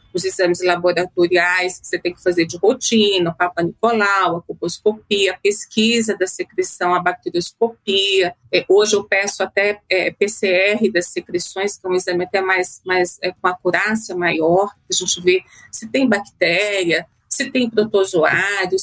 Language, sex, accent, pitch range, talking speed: Portuguese, female, Brazilian, 180-215 Hz, 165 wpm